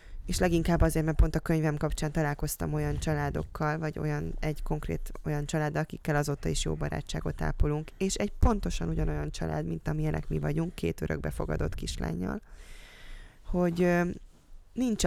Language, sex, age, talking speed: Hungarian, female, 20-39, 155 wpm